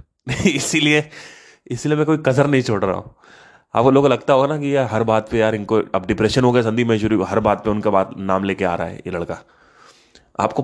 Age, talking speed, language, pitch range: 20-39, 230 wpm, Hindi, 100-125 Hz